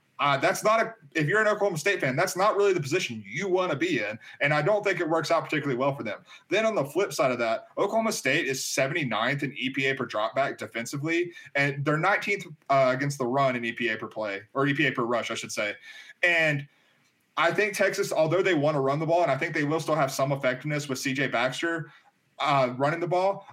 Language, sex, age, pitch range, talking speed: English, male, 30-49, 130-170 Hz, 235 wpm